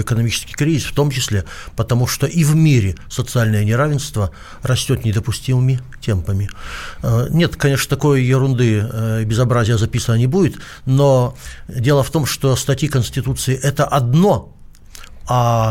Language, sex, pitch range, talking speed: Russian, male, 110-140 Hz, 130 wpm